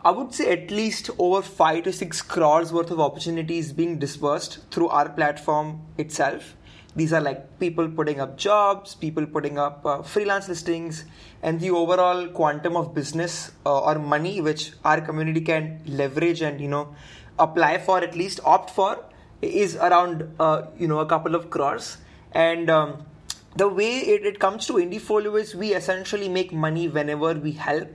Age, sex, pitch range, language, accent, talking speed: 20-39, male, 150-185 Hz, English, Indian, 175 wpm